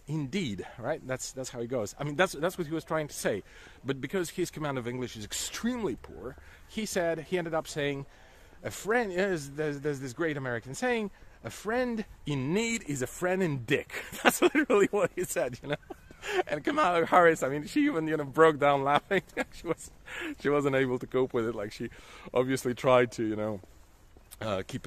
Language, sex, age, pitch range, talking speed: English, male, 40-59, 105-170 Hz, 210 wpm